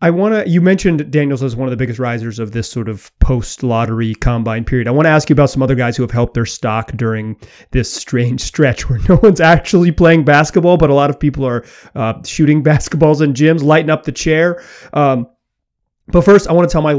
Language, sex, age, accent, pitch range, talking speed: English, male, 30-49, American, 135-180 Hz, 235 wpm